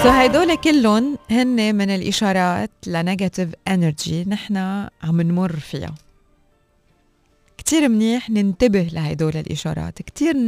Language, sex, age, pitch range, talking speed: Arabic, female, 20-39, 175-220 Hz, 95 wpm